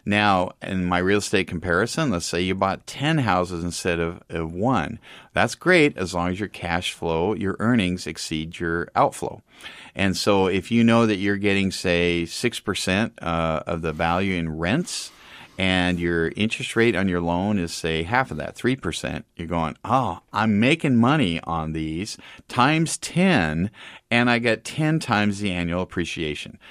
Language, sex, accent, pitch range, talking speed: English, male, American, 85-110 Hz, 175 wpm